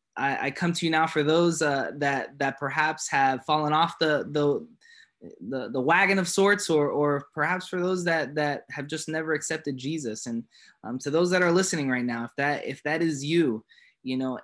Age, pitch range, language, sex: 20-39, 130-170 Hz, English, male